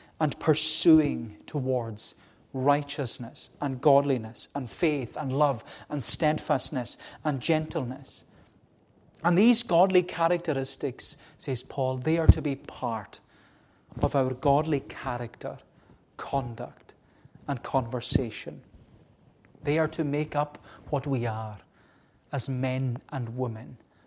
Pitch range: 125-150 Hz